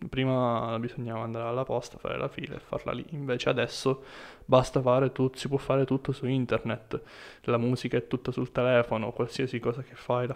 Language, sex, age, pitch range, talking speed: Italian, male, 20-39, 120-130 Hz, 190 wpm